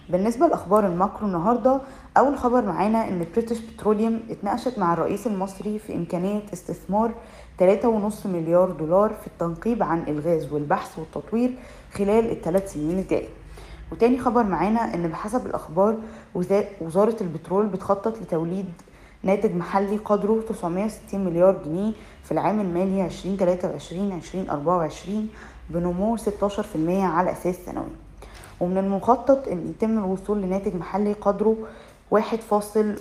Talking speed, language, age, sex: 120 wpm, Arabic, 20-39, female